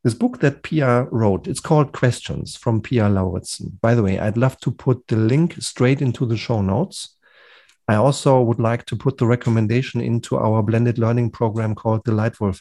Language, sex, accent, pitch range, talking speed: German, male, German, 110-140 Hz, 195 wpm